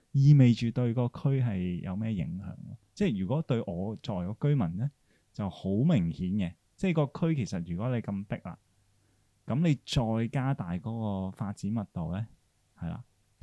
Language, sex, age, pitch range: Chinese, male, 20-39, 100-135 Hz